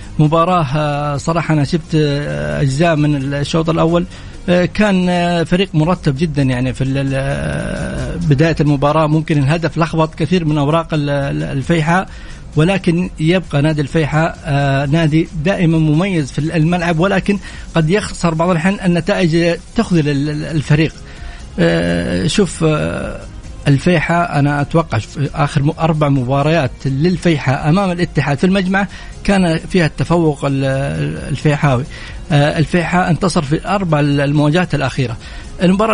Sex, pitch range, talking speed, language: male, 150-175 Hz, 105 wpm, English